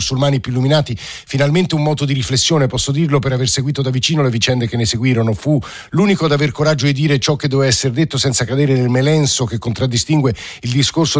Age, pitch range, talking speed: 50-69, 120-150 Hz, 215 wpm